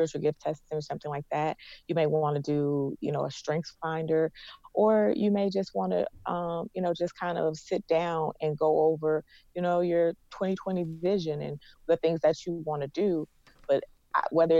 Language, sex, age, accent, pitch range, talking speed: English, female, 30-49, American, 140-170 Hz, 200 wpm